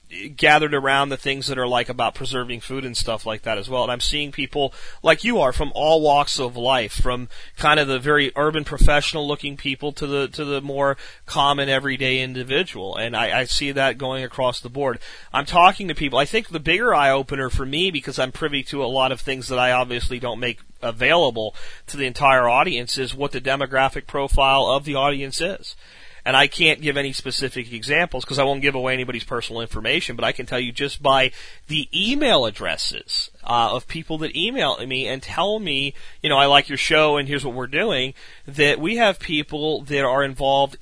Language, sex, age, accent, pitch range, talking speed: English, male, 30-49, American, 130-150 Hz, 210 wpm